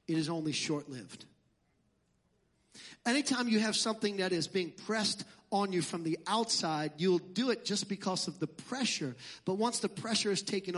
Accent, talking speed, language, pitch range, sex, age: American, 175 wpm, English, 190-240 Hz, male, 40-59